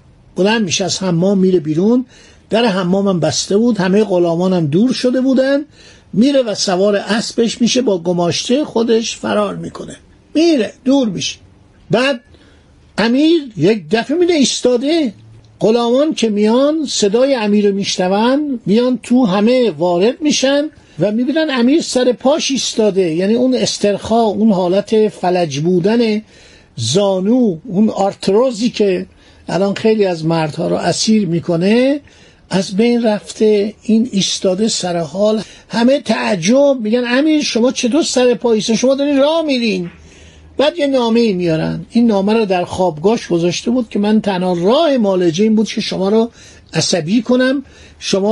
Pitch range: 185-250 Hz